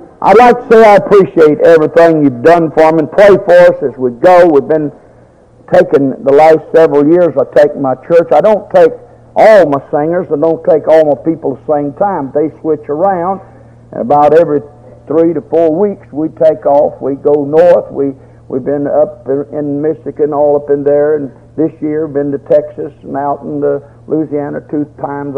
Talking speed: 200 wpm